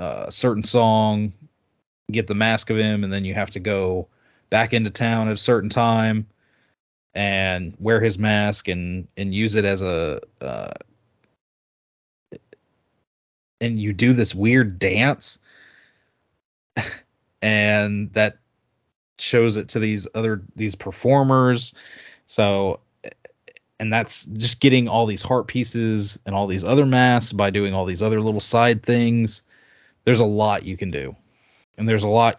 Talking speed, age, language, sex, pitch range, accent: 145 wpm, 20-39, English, male, 100-115 Hz, American